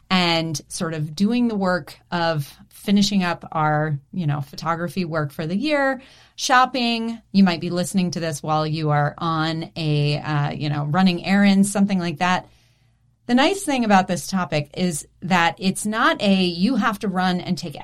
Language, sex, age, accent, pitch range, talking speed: English, female, 30-49, American, 165-205 Hz, 180 wpm